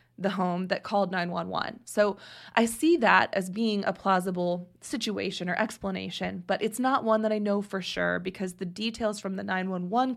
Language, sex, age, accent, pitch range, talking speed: English, female, 20-39, American, 180-215 Hz, 185 wpm